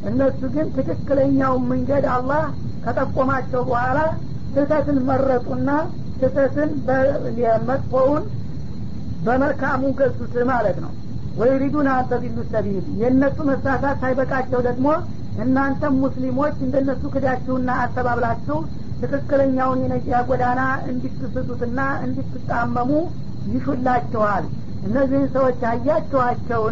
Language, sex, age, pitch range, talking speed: Amharic, female, 50-69, 250-270 Hz, 80 wpm